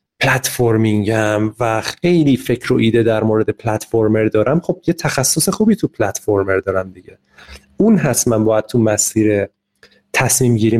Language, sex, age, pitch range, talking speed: Persian, male, 30-49, 110-160 Hz, 150 wpm